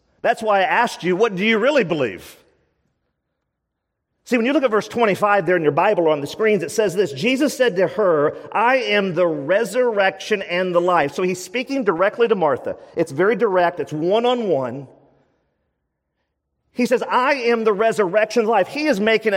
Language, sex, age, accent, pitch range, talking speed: English, male, 40-59, American, 205-270 Hz, 185 wpm